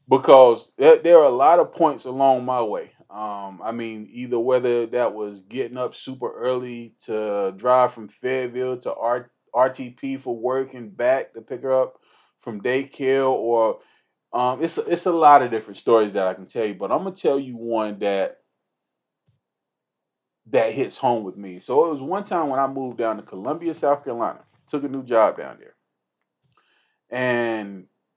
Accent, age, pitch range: American, 30-49, 110-145 Hz